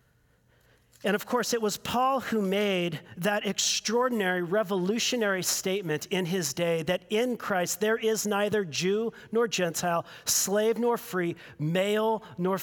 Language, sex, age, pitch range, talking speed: English, male, 40-59, 180-225 Hz, 140 wpm